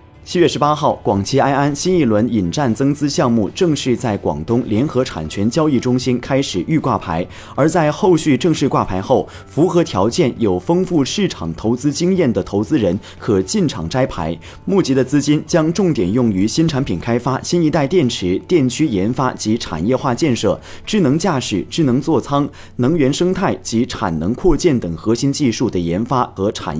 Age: 30-49